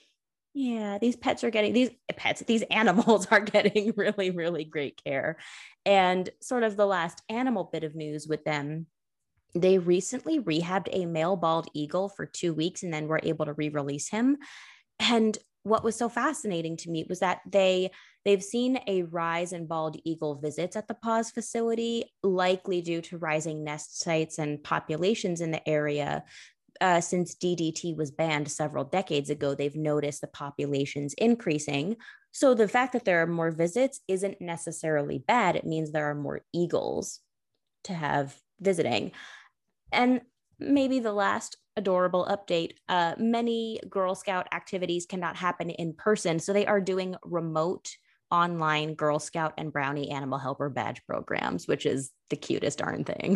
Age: 20-39